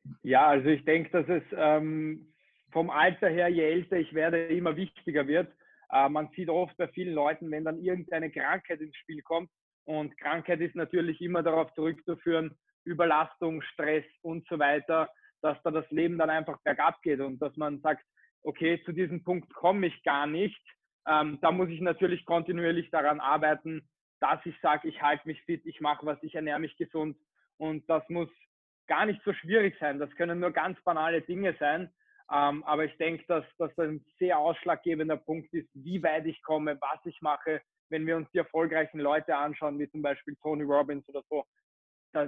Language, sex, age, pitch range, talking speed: German, male, 20-39, 150-170 Hz, 190 wpm